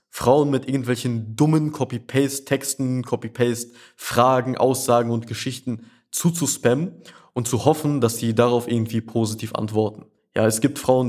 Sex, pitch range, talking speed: male, 110-135 Hz, 125 wpm